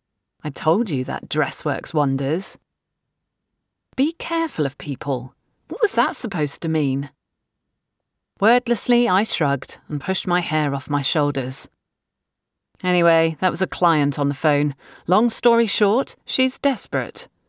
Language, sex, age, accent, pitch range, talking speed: English, female, 40-59, British, 150-220 Hz, 135 wpm